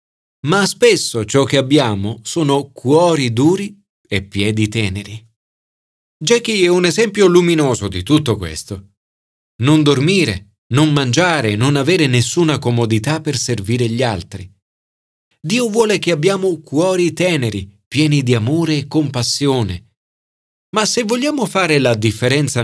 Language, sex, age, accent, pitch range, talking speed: Italian, male, 40-59, native, 110-170 Hz, 125 wpm